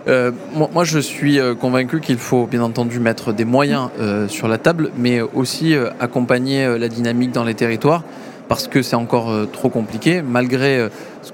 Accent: French